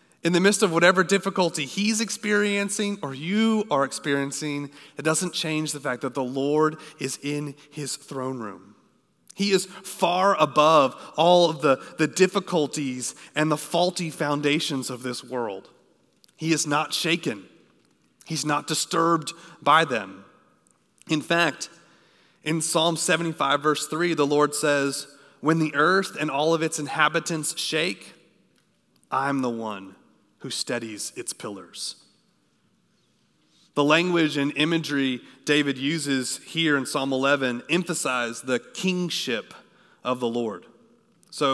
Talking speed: 135 wpm